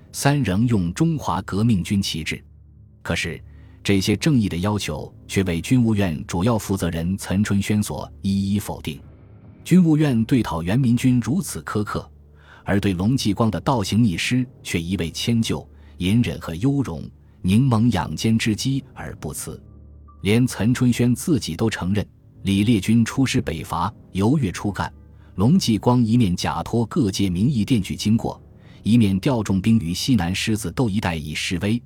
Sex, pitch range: male, 85-115 Hz